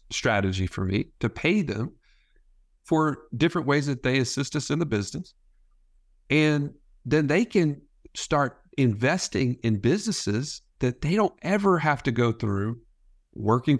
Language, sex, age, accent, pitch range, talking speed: English, male, 50-69, American, 105-140 Hz, 145 wpm